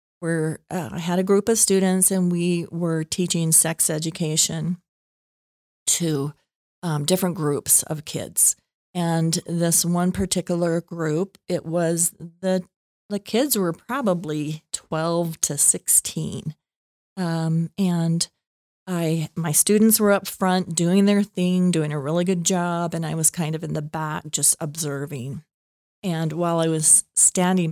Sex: female